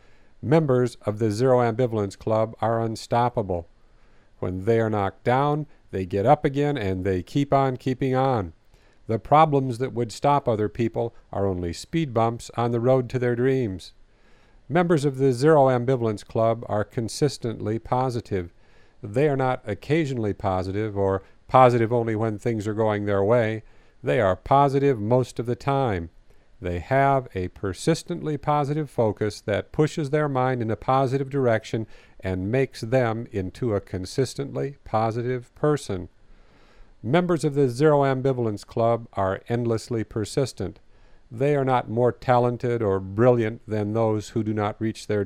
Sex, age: male, 50-69